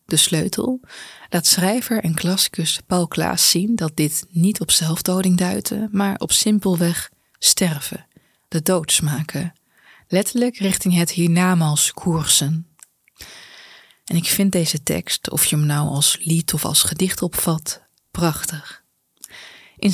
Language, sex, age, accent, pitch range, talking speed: Dutch, female, 20-39, Dutch, 160-185 Hz, 130 wpm